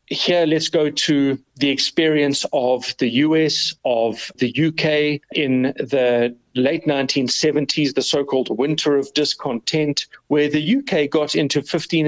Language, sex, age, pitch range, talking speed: English, male, 40-59, 135-160 Hz, 135 wpm